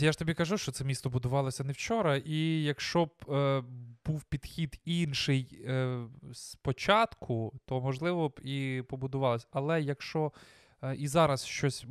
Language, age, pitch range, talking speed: Ukrainian, 20-39, 125-150 Hz, 150 wpm